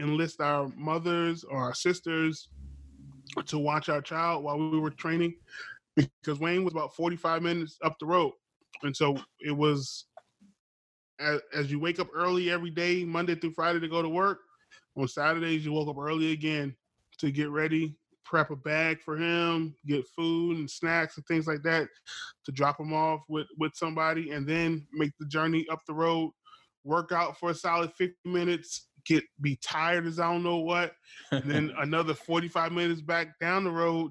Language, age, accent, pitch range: English, 20-39, American, 150-170 Hz